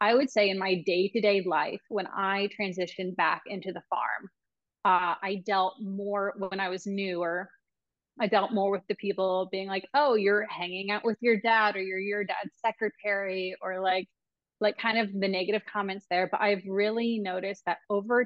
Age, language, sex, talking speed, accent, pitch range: 20-39, English, female, 185 wpm, American, 190-215 Hz